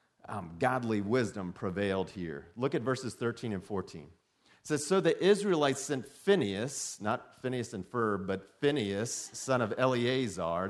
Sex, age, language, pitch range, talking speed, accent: male, 40-59, English, 105-155 Hz, 150 wpm, American